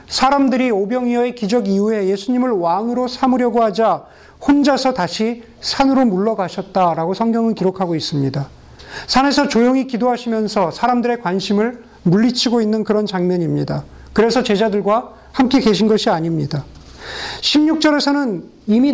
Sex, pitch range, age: male, 185-245 Hz, 40-59